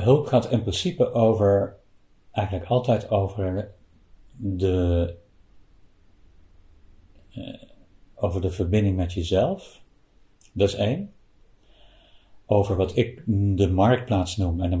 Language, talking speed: Dutch, 100 wpm